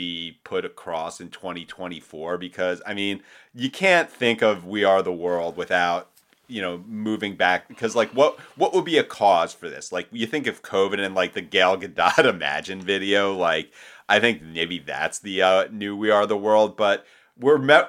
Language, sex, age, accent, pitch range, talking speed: English, male, 30-49, American, 90-110 Hz, 190 wpm